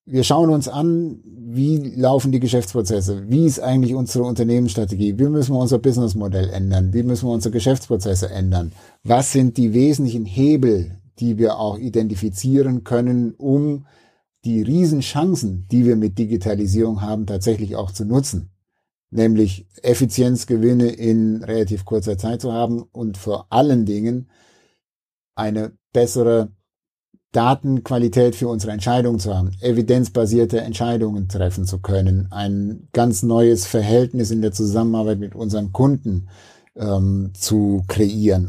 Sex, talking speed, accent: male, 135 wpm, German